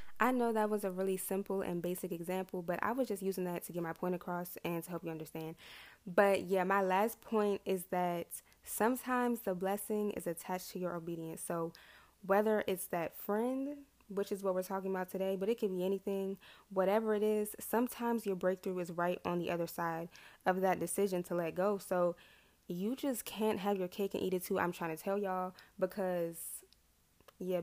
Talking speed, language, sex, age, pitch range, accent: 205 wpm, English, female, 10-29, 175-205 Hz, American